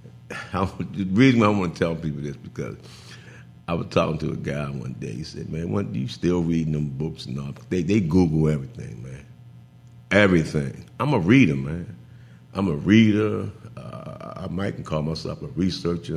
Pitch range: 75-95 Hz